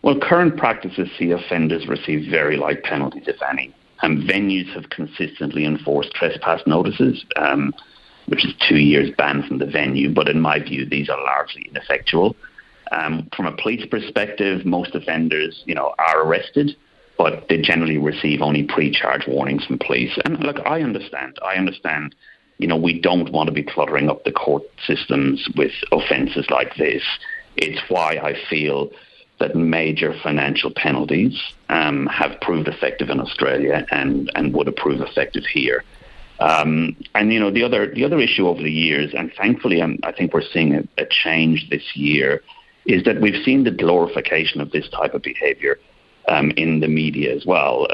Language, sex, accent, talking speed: English, male, British, 175 wpm